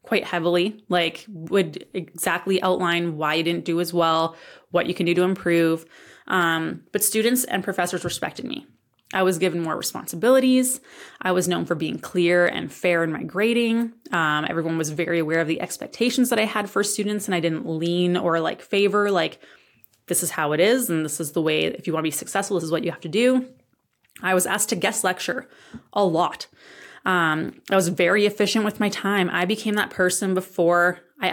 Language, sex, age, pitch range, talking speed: English, female, 20-39, 170-210 Hz, 205 wpm